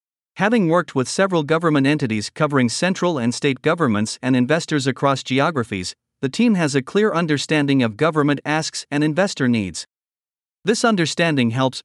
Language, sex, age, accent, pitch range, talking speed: English, male, 50-69, American, 125-170 Hz, 150 wpm